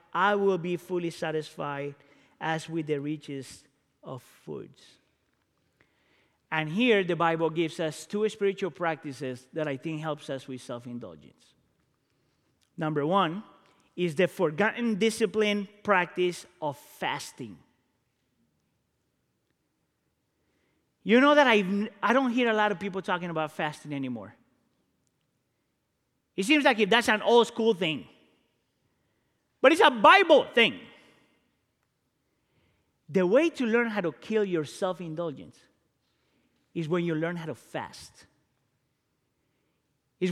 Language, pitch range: English, 160-220 Hz